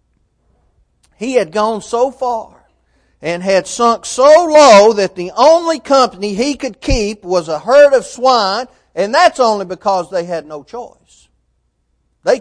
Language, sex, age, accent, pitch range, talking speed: English, male, 40-59, American, 140-235 Hz, 150 wpm